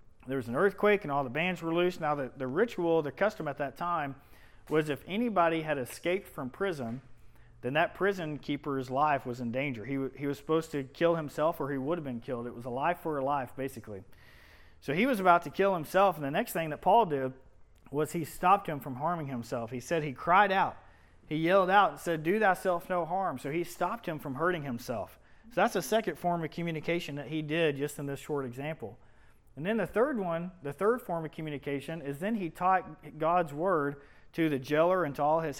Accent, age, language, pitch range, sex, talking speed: American, 40-59, English, 130-170 Hz, male, 230 wpm